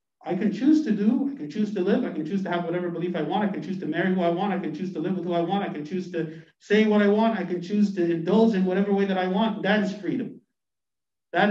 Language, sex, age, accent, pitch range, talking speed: English, male, 50-69, American, 155-200 Hz, 310 wpm